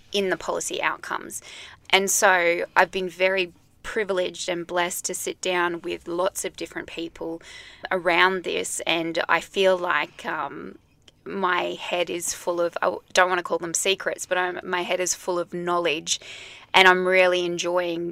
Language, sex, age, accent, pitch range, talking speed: English, female, 20-39, Australian, 175-190 Hz, 165 wpm